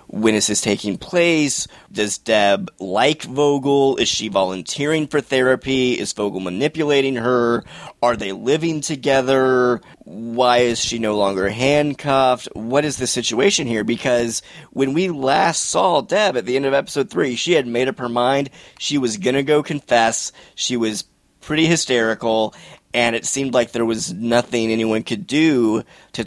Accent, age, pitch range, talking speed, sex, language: American, 30-49, 115-145 Hz, 165 wpm, male, English